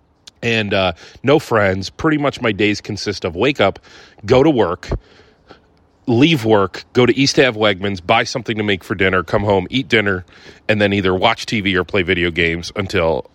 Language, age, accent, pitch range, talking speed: English, 30-49, American, 95-125 Hz, 190 wpm